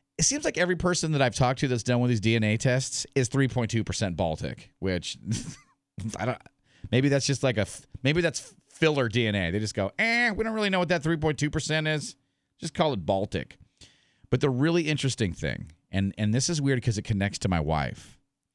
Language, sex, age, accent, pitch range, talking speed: English, male, 40-59, American, 110-155 Hz, 205 wpm